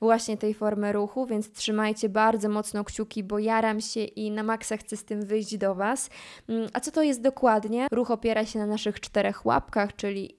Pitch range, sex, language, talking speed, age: 215-240 Hz, female, Polish, 195 wpm, 20-39